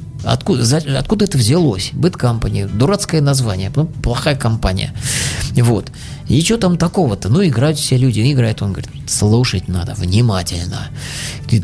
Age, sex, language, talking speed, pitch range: 20-39, male, Russian, 135 wpm, 120-155 Hz